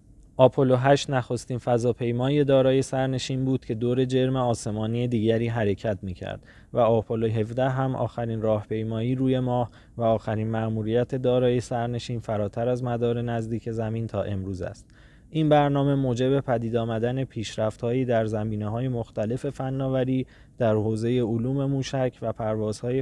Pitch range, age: 110-130 Hz, 20-39